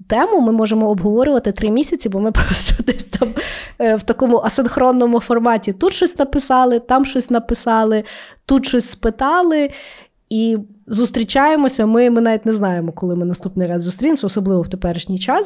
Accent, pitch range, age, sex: native, 185-245 Hz, 20-39, female